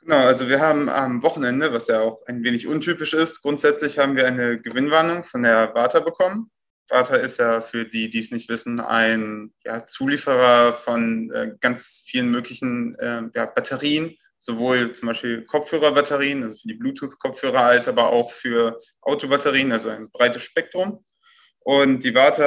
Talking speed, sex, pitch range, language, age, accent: 165 wpm, male, 120-150 Hz, German, 20-39, German